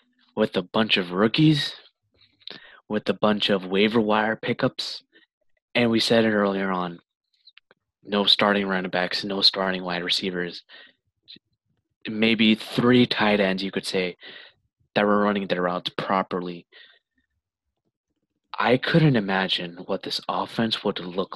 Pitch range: 95-110 Hz